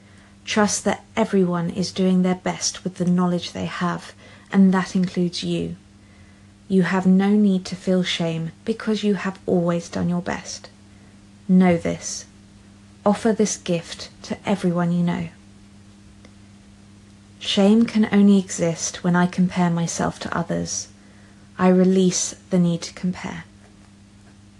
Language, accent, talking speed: English, British, 135 wpm